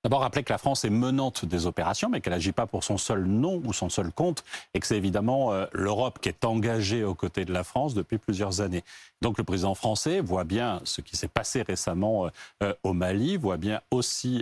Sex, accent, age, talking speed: male, French, 40-59, 235 wpm